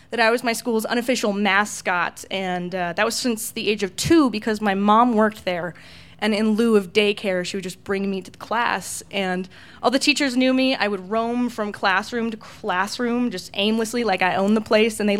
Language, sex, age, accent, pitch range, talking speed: English, female, 20-39, American, 200-240 Hz, 220 wpm